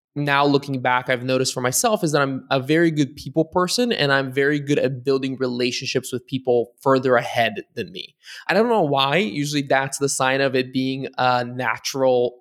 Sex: male